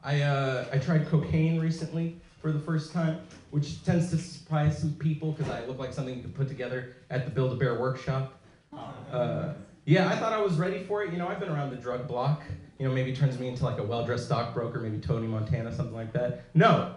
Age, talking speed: 30-49, 225 wpm